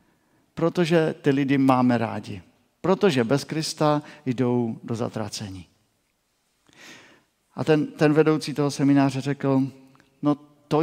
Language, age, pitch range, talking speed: Czech, 50-69, 120-145 Hz, 110 wpm